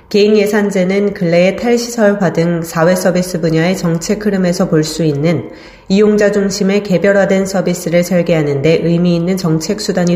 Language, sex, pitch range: Korean, female, 160-205 Hz